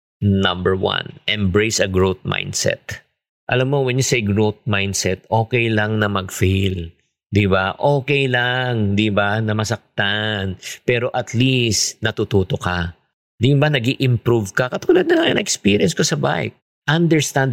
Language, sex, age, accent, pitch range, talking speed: English, male, 50-69, Filipino, 105-140 Hz, 140 wpm